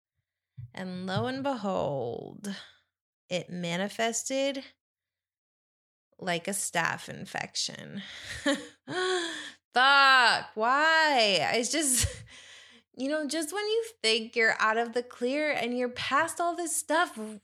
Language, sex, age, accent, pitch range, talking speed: English, female, 20-39, American, 195-280 Hz, 105 wpm